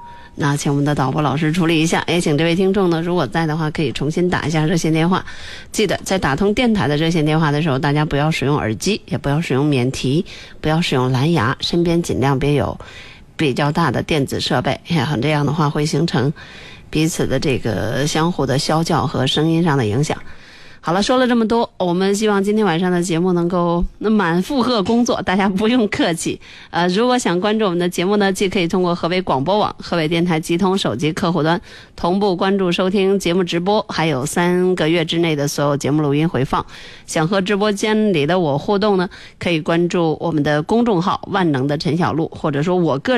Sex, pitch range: female, 150-195 Hz